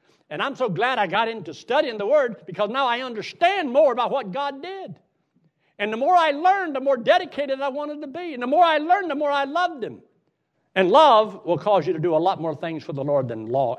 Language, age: English, 60-79